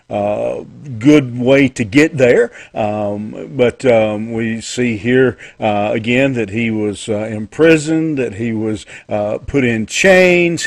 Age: 50-69